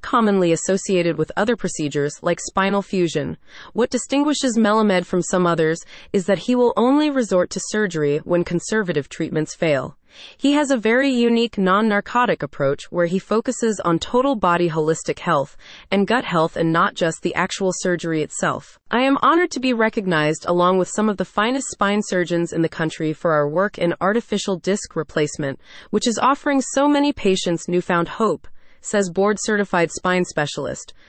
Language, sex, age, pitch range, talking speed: English, female, 30-49, 170-225 Hz, 170 wpm